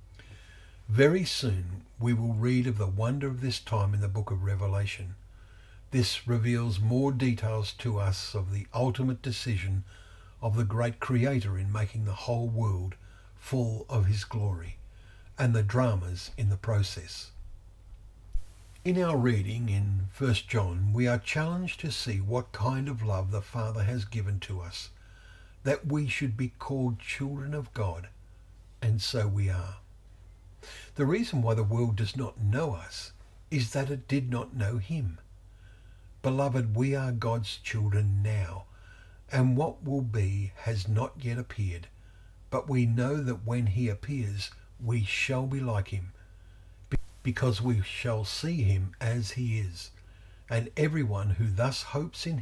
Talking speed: 155 wpm